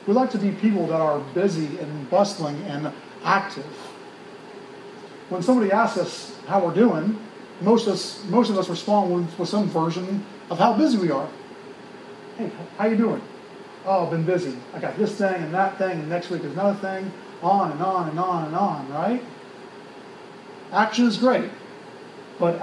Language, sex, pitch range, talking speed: English, male, 170-205 Hz, 180 wpm